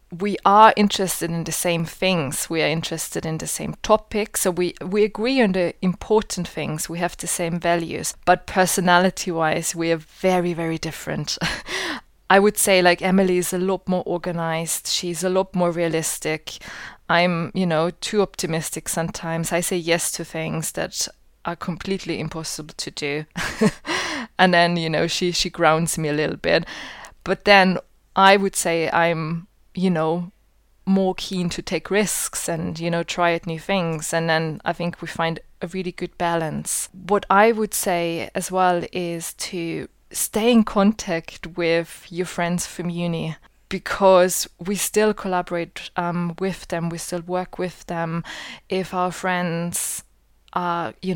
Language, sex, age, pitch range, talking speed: English, female, 20-39, 165-185 Hz, 165 wpm